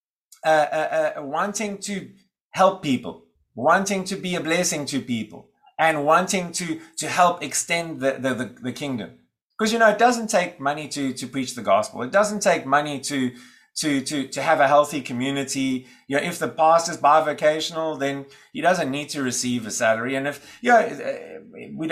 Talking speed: 190 wpm